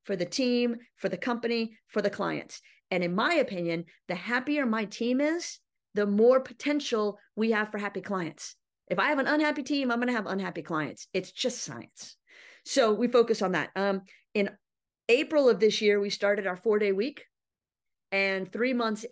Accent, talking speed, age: American, 190 wpm, 40-59